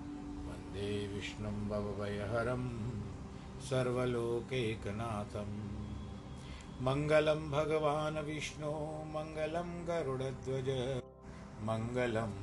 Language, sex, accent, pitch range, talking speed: Hindi, male, native, 100-125 Hz, 50 wpm